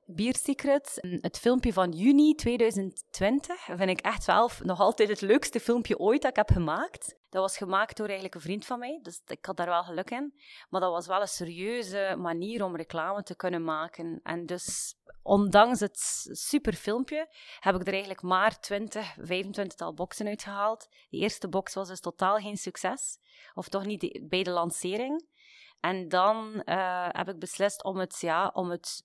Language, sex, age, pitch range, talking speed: Dutch, female, 30-49, 180-225 Hz, 185 wpm